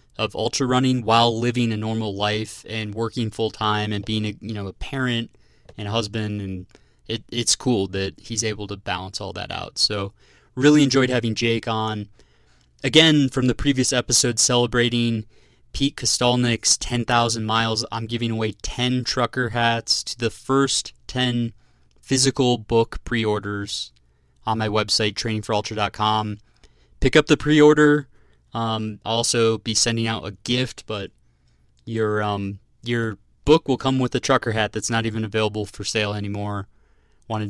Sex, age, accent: male, 20-39, American